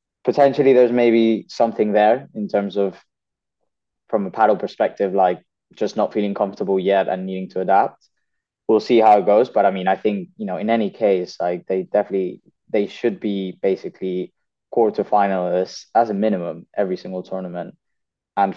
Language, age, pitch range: English, 20-39, 95-110 Hz